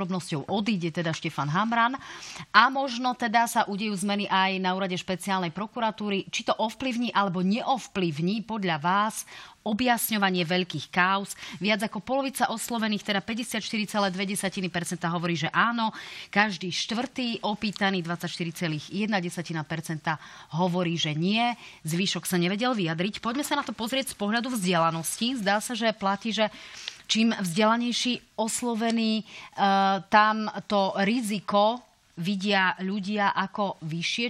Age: 30-49